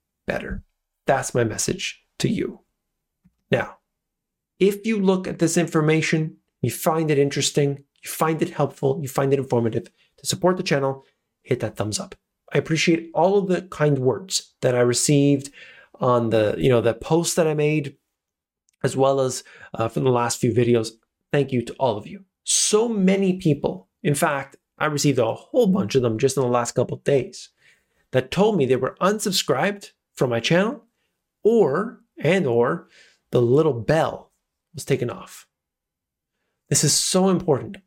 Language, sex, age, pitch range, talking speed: English, male, 30-49, 130-185 Hz, 170 wpm